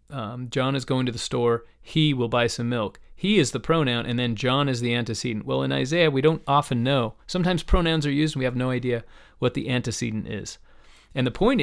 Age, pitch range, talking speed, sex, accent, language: 30-49, 115-140 Hz, 230 wpm, male, American, English